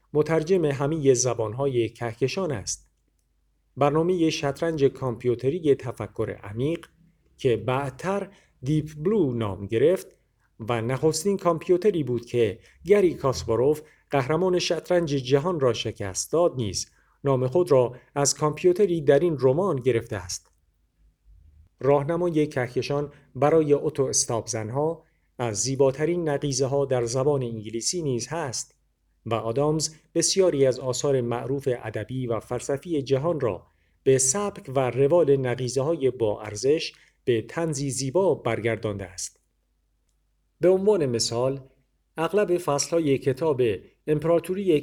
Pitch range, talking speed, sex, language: 120-160 Hz, 110 wpm, male, Persian